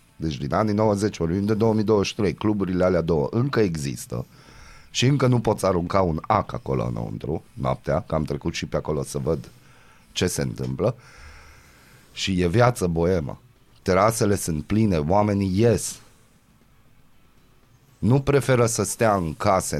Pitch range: 90-130 Hz